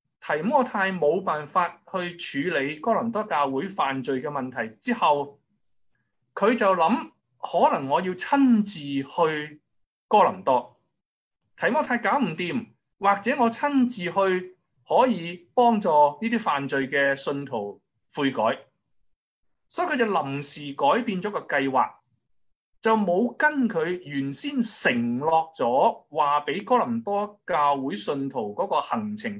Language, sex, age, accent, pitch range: Chinese, male, 20-39, native, 155-245 Hz